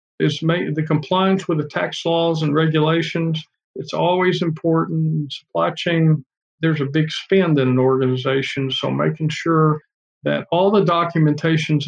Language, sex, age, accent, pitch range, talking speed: English, male, 50-69, American, 135-160 Hz, 145 wpm